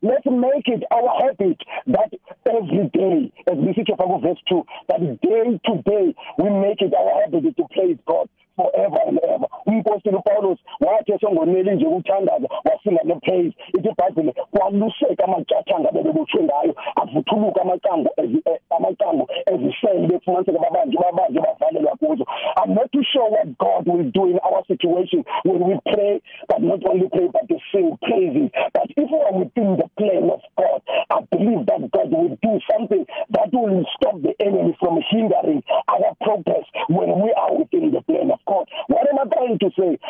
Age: 50-69